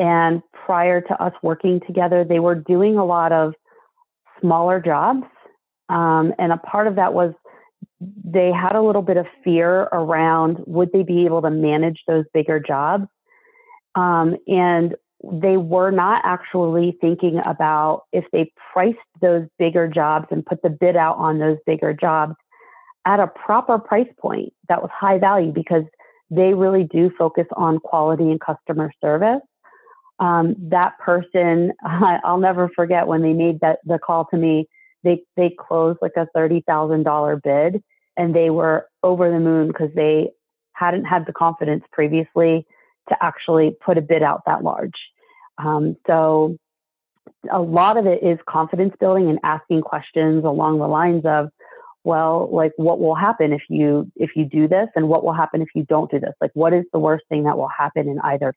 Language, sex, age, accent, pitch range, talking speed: English, female, 40-59, American, 160-185 Hz, 175 wpm